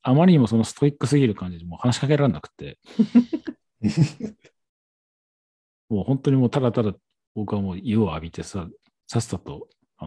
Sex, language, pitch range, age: male, Japanese, 90-135 Hz, 40-59